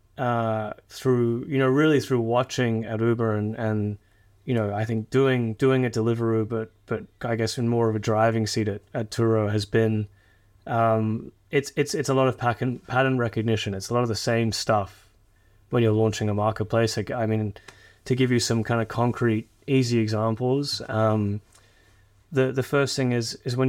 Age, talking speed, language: 20-39, 190 wpm, English